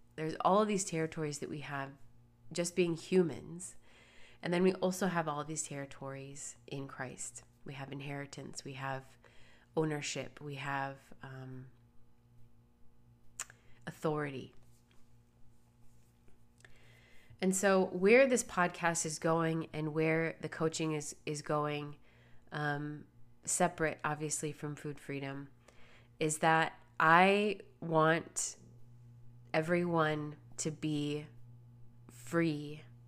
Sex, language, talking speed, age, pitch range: female, English, 105 wpm, 30-49, 120-160 Hz